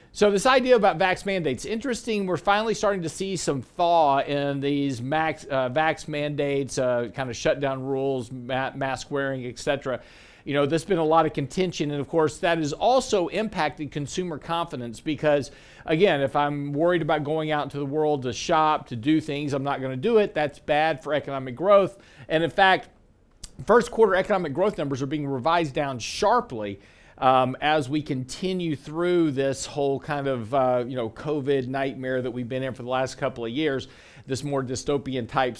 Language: English